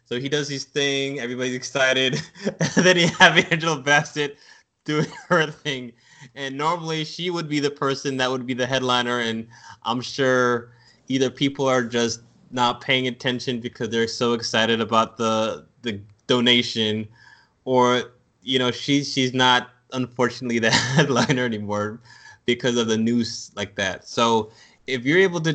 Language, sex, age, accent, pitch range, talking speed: English, male, 20-39, American, 105-130 Hz, 155 wpm